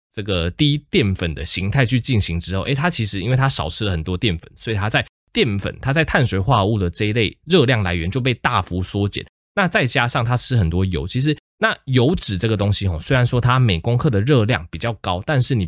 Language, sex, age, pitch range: Chinese, male, 20-39, 90-130 Hz